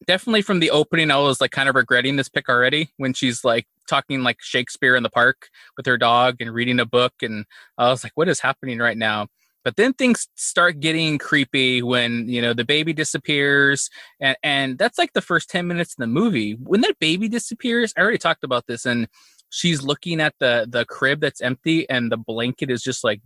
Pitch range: 125-170 Hz